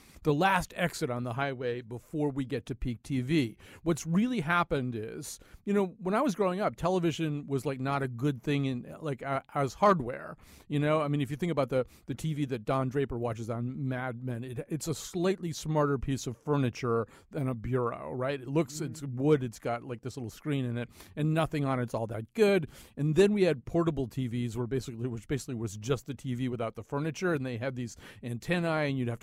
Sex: male